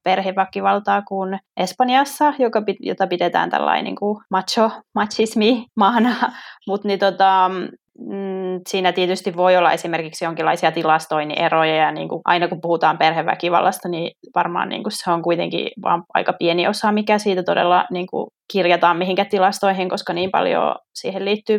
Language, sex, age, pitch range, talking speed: Finnish, female, 20-39, 175-200 Hz, 145 wpm